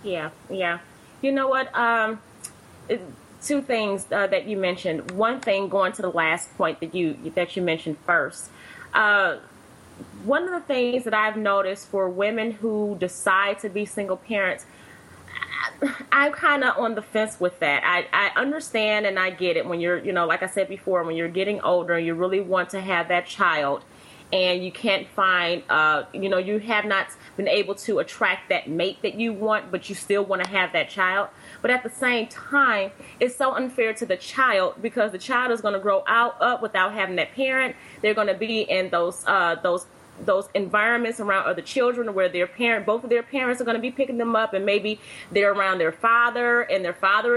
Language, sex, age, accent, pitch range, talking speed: English, female, 30-49, American, 185-235 Hz, 205 wpm